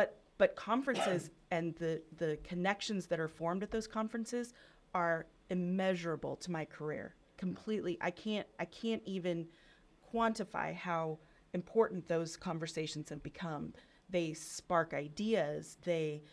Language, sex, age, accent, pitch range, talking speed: English, female, 30-49, American, 160-195 Hz, 125 wpm